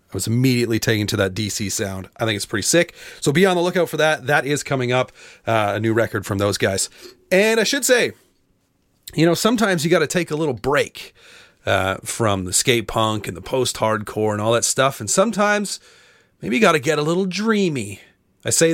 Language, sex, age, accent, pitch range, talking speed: English, male, 30-49, American, 105-145 Hz, 220 wpm